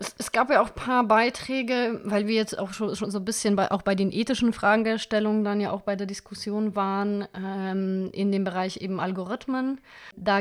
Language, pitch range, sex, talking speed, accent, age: German, 185-210 Hz, female, 200 wpm, German, 20-39